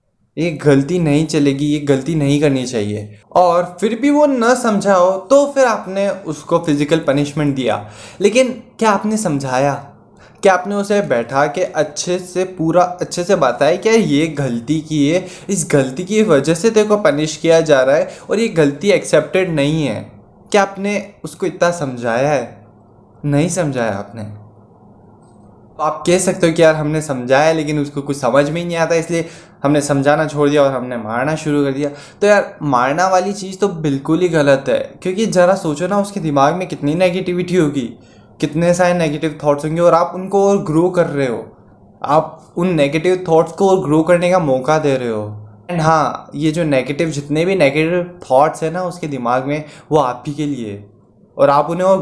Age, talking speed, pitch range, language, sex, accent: 20-39, 185 wpm, 140-180 Hz, Hindi, male, native